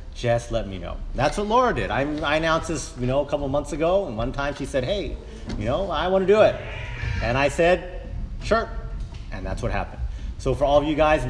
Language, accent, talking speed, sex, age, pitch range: English, American, 245 wpm, male, 30-49, 100-135 Hz